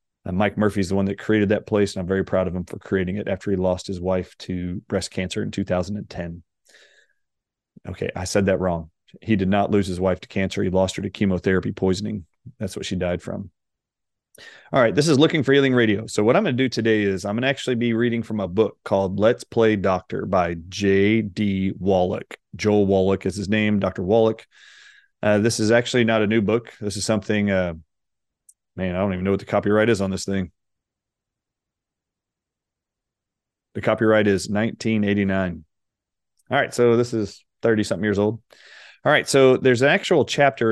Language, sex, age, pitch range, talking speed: English, male, 30-49, 95-115 Hz, 200 wpm